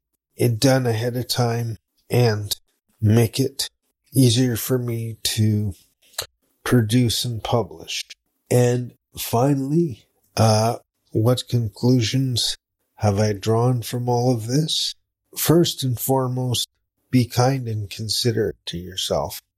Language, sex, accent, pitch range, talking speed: English, male, American, 110-125 Hz, 110 wpm